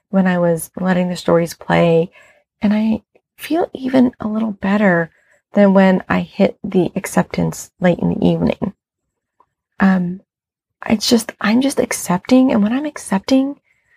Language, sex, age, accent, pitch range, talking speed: English, female, 30-49, American, 175-210 Hz, 145 wpm